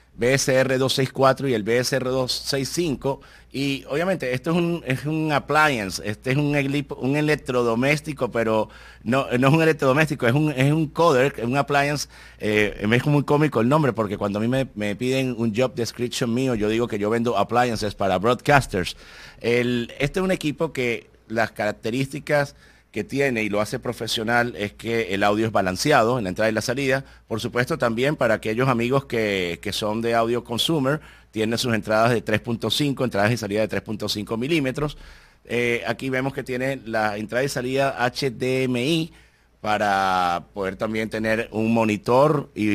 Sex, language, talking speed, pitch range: male, Spanish, 175 wpm, 110-135 Hz